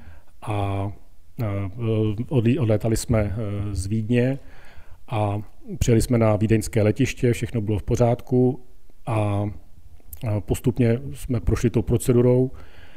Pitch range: 105-120 Hz